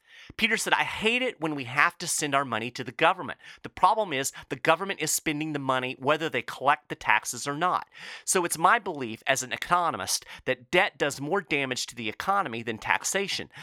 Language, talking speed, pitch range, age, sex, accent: English, 210 wpm, 125-175 Hz, 40-59, male, American